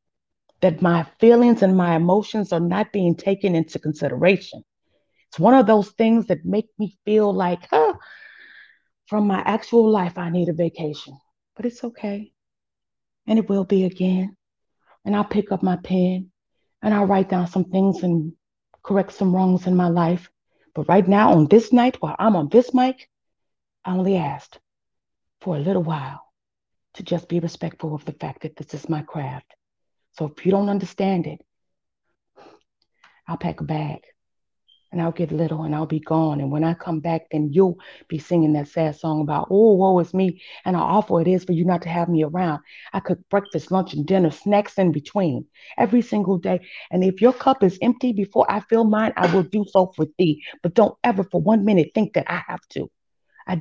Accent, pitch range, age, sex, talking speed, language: American, 165-205 Hz, 30-49, female, 195 wpm, English